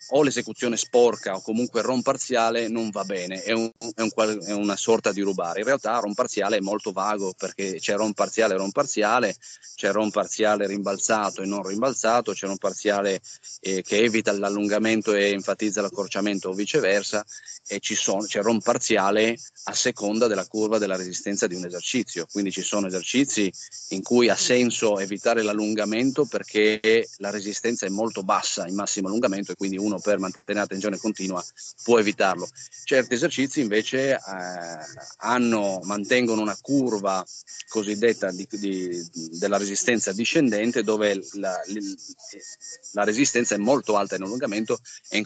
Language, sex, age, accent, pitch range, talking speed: Italian, male, 30-49, native, 100-115 Hz, 160 wpm